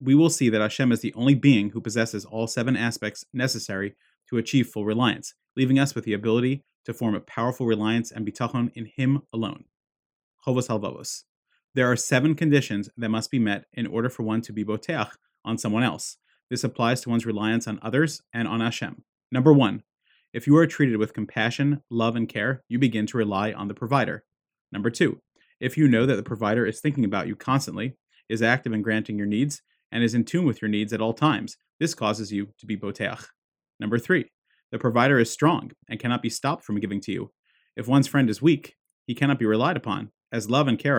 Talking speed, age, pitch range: 210 wpm, 30-49, 110-135 Hz